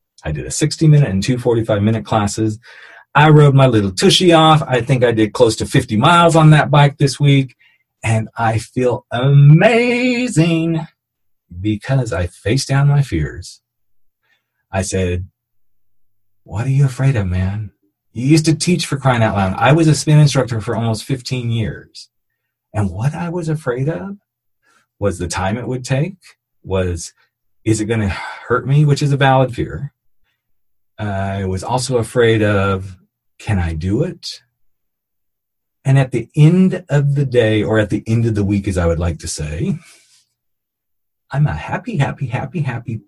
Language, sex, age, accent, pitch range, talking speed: English, male, 40-59, American, 100-140 Hz, 170 wpm